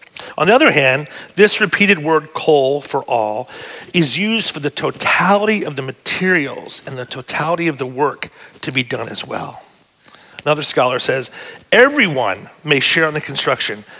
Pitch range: 140-195 Hz